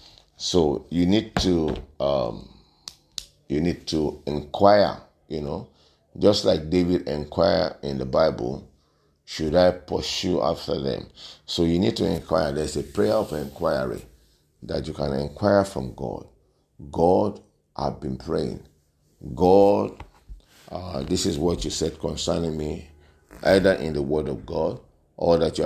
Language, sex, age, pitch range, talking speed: English, male, 50-69, 75-90 Hz, 145 wpm